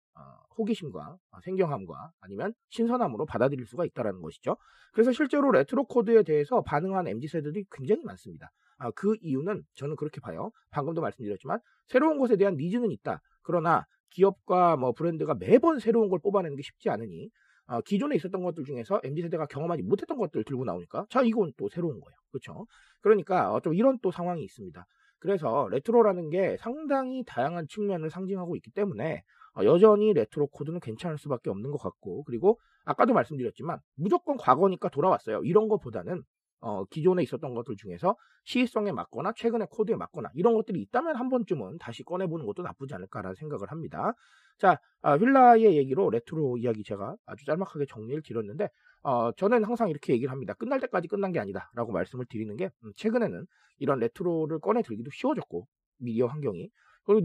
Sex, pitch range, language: male, 145-220 Hz, Korean